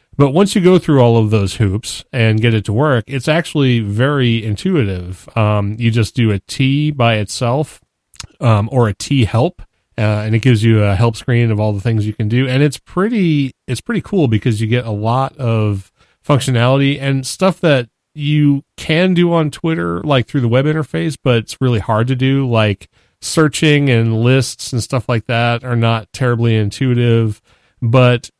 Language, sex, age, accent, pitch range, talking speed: English, male, 30-49, American, 110-135 Hz, 190 wpm